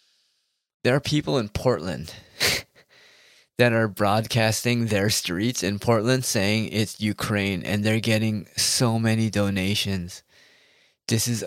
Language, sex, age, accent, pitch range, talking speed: English, male, 20-39, American, 100-120 Hz, 120 wpm